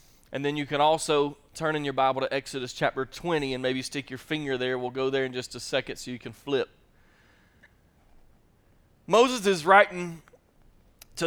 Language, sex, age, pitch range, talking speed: English, male, 30-49, 150-200 Hz, 180 wpm